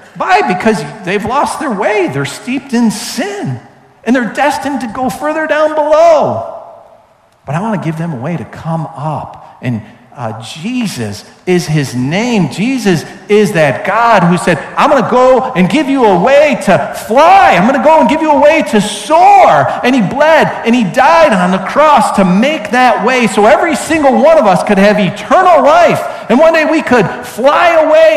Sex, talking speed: male, 200 wpm